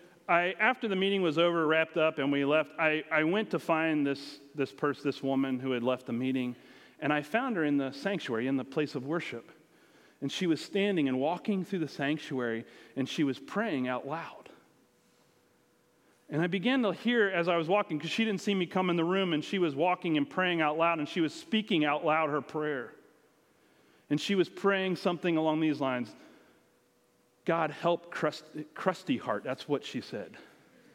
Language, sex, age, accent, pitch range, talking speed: English, male, 40-59, American, 145-195 Hz, 200 wpm